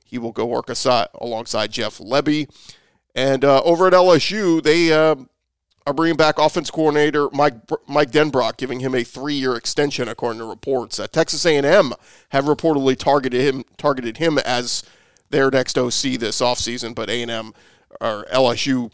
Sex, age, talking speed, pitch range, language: male, 40-59, 170 wpm, 115-150 Hz, English